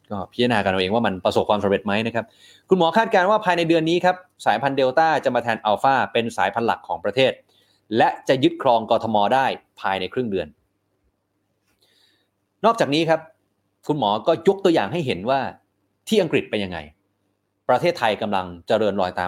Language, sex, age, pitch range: Thai, male, 30-49, 100-140 Hz